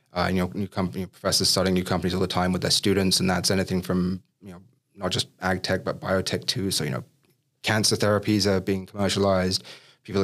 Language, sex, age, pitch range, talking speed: English, male, 30-49, 95-105 Hz, 215 wpm